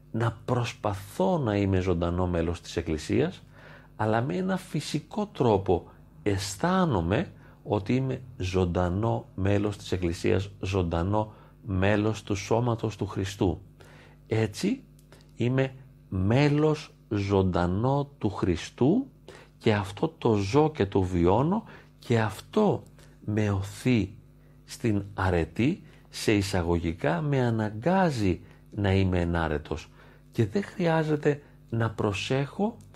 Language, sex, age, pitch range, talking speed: Greek, male, 40-59, 95-140 Hz, 105 wpm